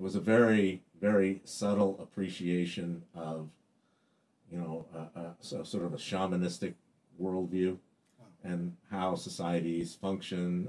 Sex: male